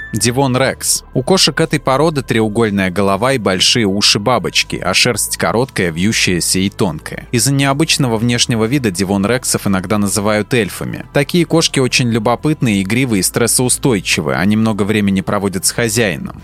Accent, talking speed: native, 140 wpm